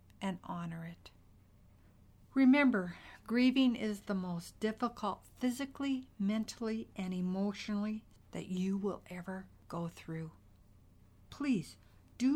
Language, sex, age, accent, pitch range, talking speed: English, female, 60-79, American, 155-215 Hz, 100 wpm